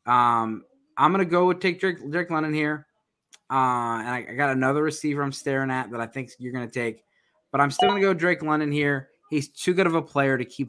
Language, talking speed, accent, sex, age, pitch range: English, 255 wpm, American, male, 20-39, 125-155 Hz